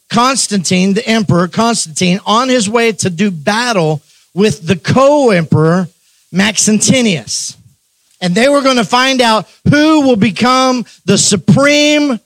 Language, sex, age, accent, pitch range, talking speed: English, male, 40-59, American, 185-235 Hz, 125 wpm